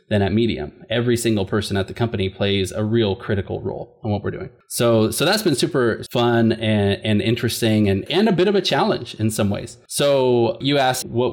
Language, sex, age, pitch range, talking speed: English, male, 20-39, 110-135 Hz, 215 wpm